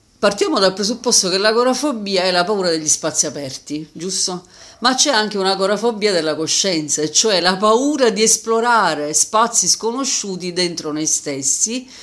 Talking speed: 140 wpm